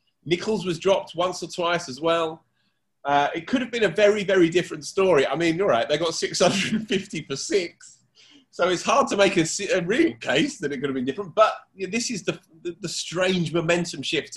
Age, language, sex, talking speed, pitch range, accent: 30-49, English, male, 220 wpm, 135-190 Hz, British